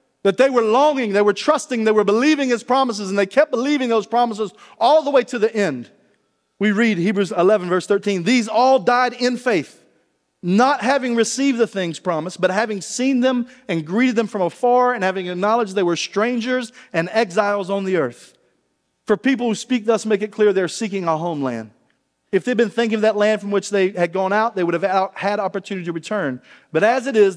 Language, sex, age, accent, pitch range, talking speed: English, male, 40-59, American, 170-240 Hz, 215 wpm